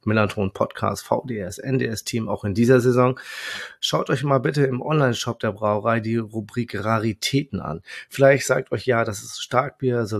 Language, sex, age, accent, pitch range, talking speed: German, male, 30-49, German, 105-130 Hz, 165 wpm